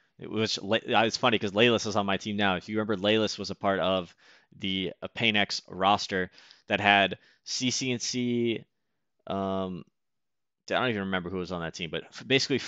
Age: 20-39